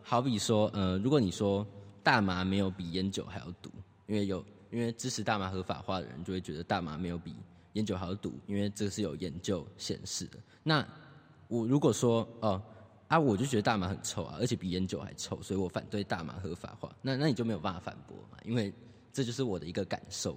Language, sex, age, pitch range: Chinese, male, 20-39, 95-120 Hz